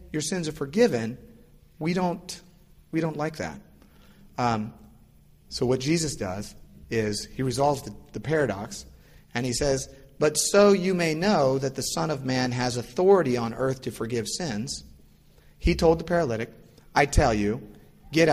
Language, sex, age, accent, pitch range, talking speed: English, male, 40-59, American, 105-140 Hz, 160 wpm